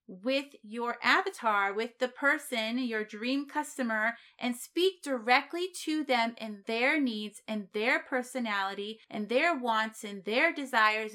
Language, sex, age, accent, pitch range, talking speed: English, female, 30-49, American, 225-285 Hz, 140 wpm